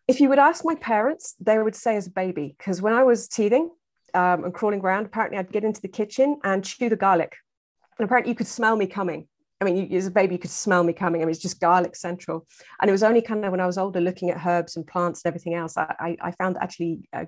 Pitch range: 175-215 Hz